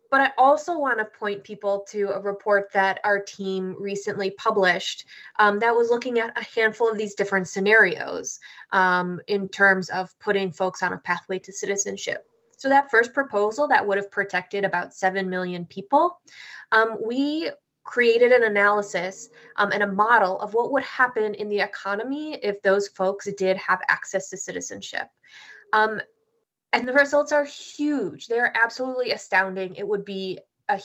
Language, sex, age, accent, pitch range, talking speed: English, female, 20-39, American, 195-245 Hz, 165 wpm